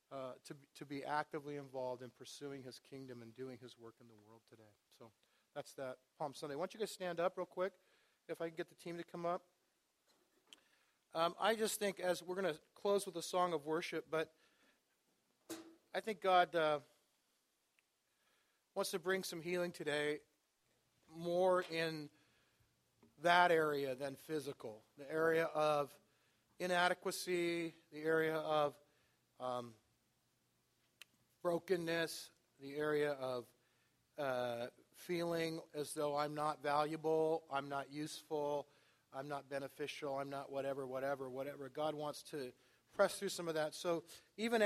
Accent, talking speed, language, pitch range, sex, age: American, 150 wpm, English, 140-175 Hz, male, 40-59